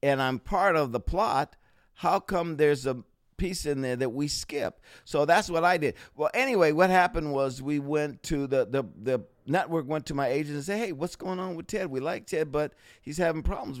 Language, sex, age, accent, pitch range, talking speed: English, male, 50-69, American, 100-145 Hz, 225 wpm